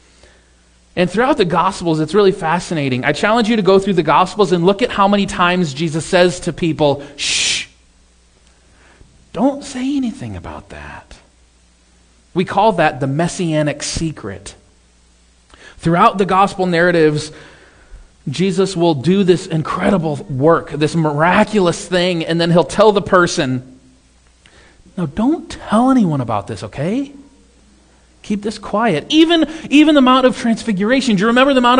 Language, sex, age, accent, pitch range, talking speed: English, male, 30-49, American, 145-235 Hz, 145 wpm